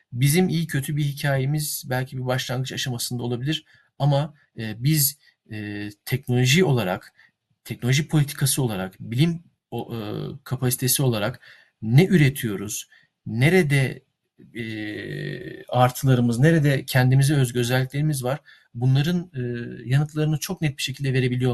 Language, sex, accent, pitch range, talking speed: Turkish, male, native, 125-150 Hz, 100 wpm